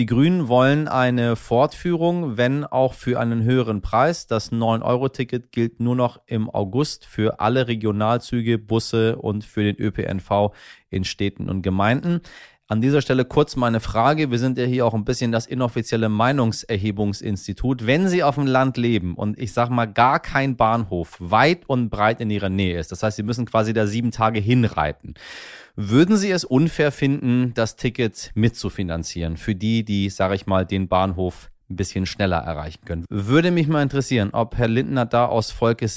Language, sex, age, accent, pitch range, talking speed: German, male, 30-49, German, 105-130 Hz, 175 wpm